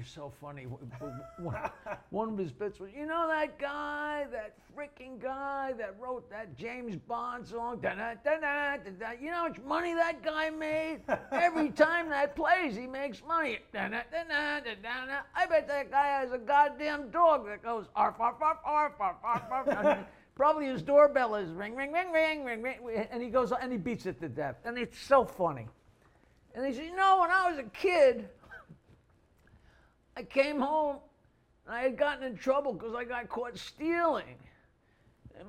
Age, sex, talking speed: 50-69, male, 155 wpm